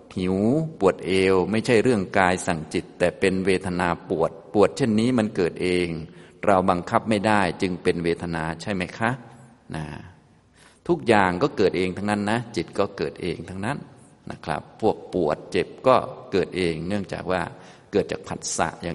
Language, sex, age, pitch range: Thai, male, 20-39, 85-105 Hz